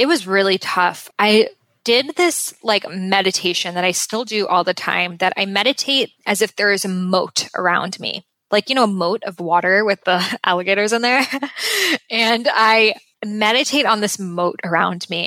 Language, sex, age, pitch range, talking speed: English, female, 20-39, 190-230 Hz, 185 wpm